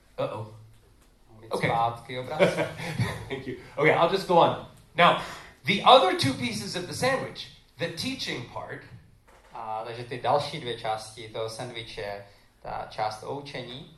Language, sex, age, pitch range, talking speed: Czech, male, 30-49, 115-160 Hz, 95 wpm